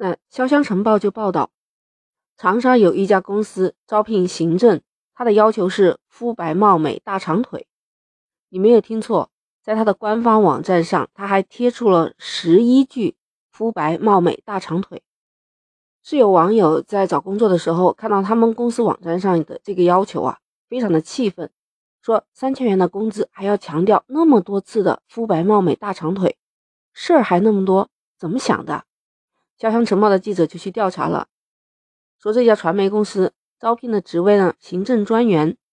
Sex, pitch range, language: female, 180-230 Hz, Chinese